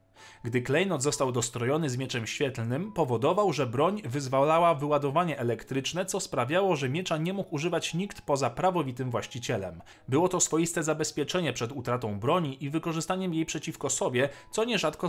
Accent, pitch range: native, 125-175 Hz